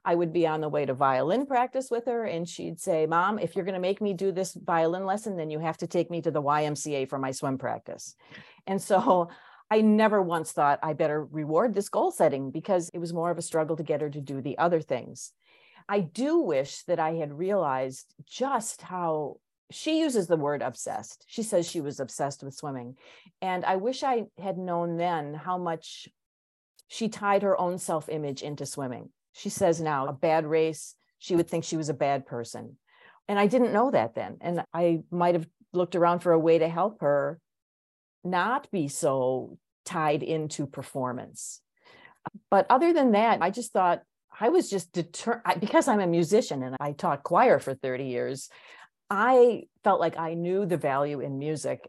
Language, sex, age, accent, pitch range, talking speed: English, female, 40-59, American, 150-195 Hz, 195 wpm